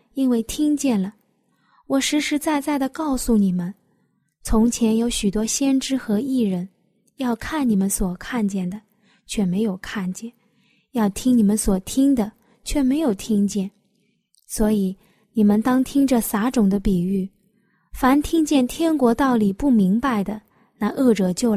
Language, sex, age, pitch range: Chinese, female, 20-39, 205-255 Hz